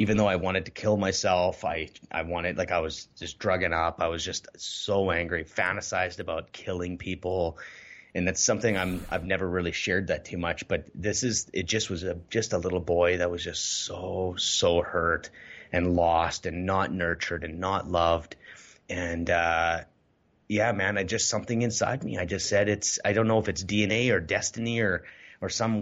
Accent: American